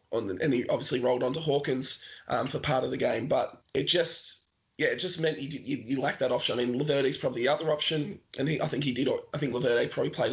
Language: English